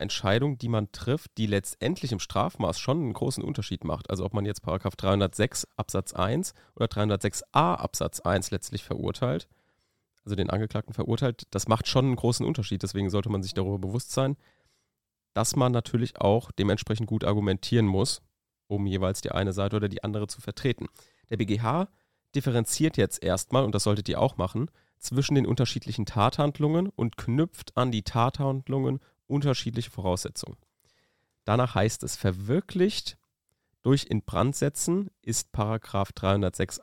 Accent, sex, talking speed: German, male, 150 wpm